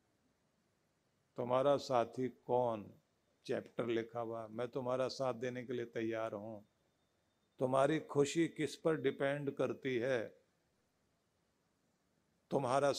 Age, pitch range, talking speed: 50-69, 125-170 Hz, 100 wpm